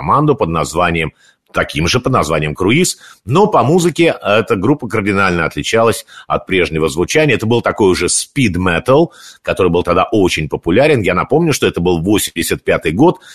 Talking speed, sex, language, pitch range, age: 155 wpm, male, Russian, 90-150 Hz, 50-69